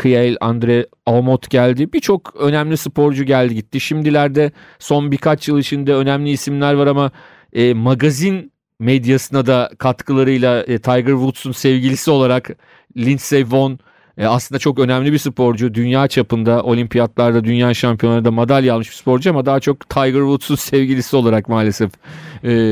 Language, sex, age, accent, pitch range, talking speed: Turkish, male, 40-59, native, 120-140 Hz, 145 wpm